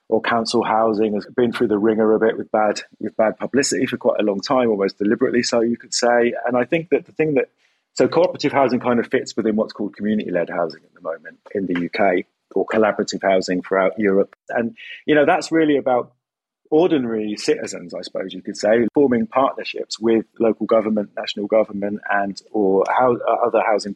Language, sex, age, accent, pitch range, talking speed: English, male, 30-49, British, 110-135 Hz, 205 wpm